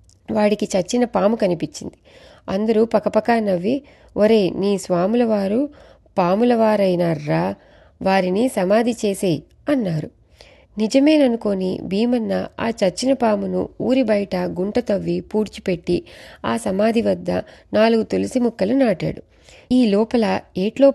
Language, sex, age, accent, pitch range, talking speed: Telugu, female, 30-49, native, 180-230 Hz, 105 wpm